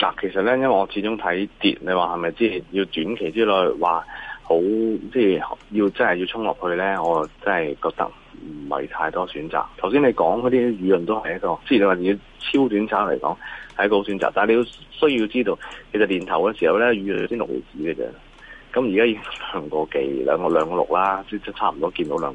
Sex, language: male, Chinese